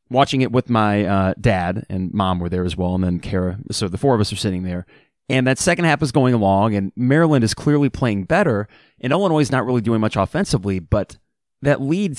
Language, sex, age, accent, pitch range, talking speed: English, male, 30-49, American, 100-135 Hz, 230 wpm